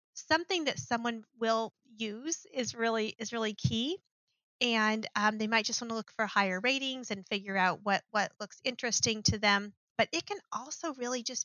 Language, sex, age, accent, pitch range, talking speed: English, female, 40-59, American, 205-245 Hz, 190 wpm